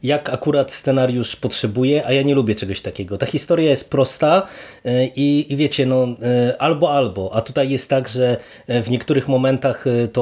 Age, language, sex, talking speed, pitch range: 30-49, Polish, male, 170 wpm, 120-140 Hz